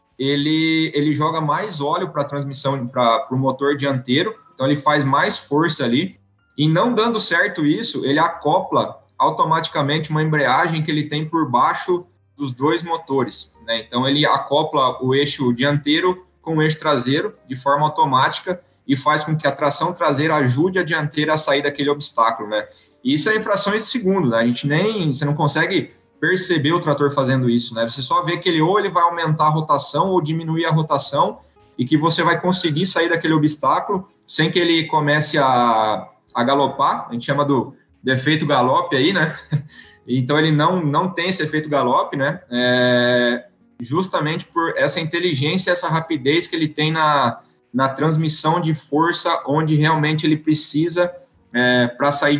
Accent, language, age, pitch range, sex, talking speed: Brazilian, Portuguese, 20-39, 135-165 Hz, male, 175 wpm